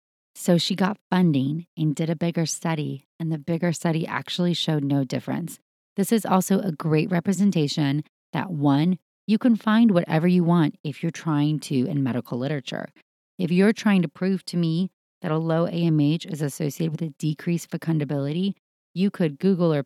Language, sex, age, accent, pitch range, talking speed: English, female, 30-49, American, 145-185 Hz, 180 wpm